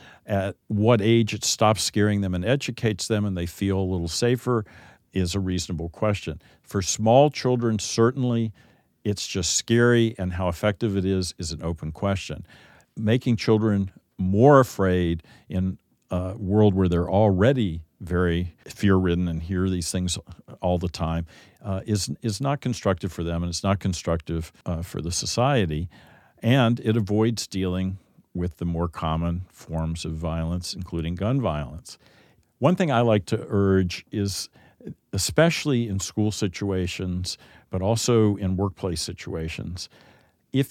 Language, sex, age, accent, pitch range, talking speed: English, male, 50-69, American, 90-115 Hz, 150 wpm